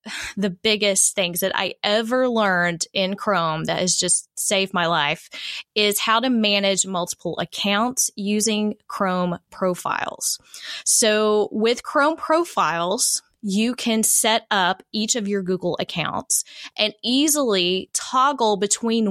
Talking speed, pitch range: 130 wpm, 185-235 Hz